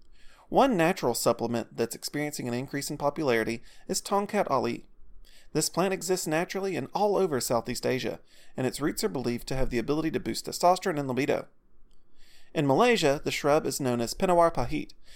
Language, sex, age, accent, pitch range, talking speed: English, male, 30-49, American, 120-180 Hz, 175 wpm